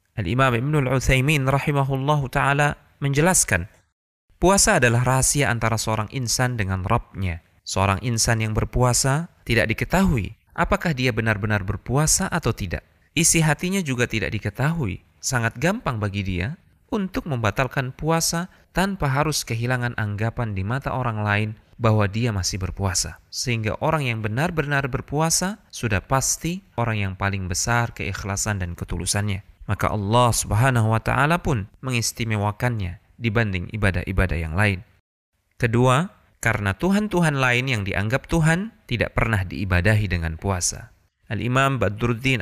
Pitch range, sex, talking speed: 100-135 Hz, male, 125 wpm